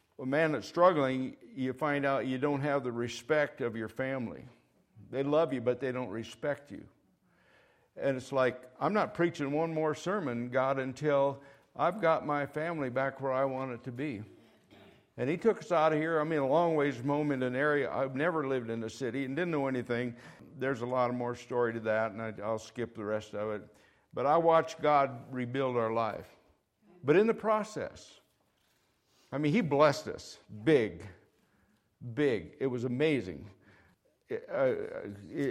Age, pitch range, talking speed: 60-79, 115-145 Hz, 180 wpm